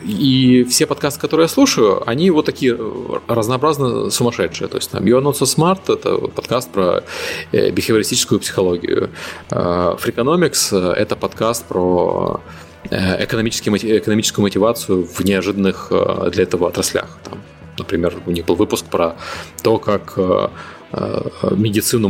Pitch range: 95-130 Hz